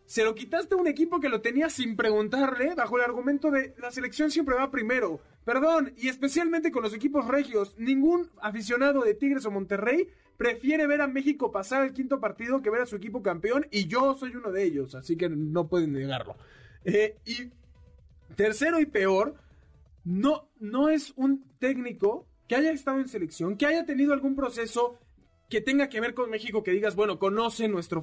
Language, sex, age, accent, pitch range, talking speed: Spanish, male, 30-49, Mexican, 185-270 Hz, 190 wpm